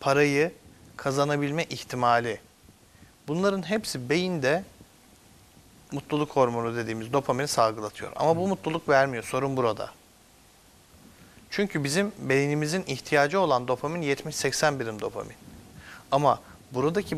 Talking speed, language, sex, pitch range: 100 wpm, Turkish, male, 125-160 Hz